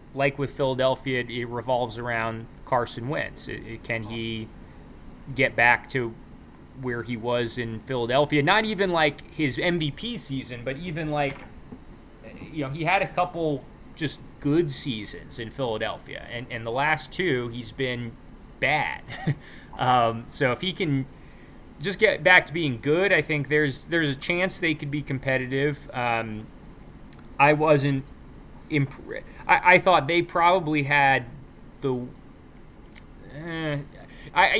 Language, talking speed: English, 135 wpm